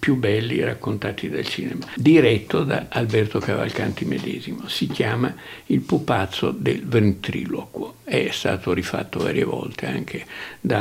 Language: Italian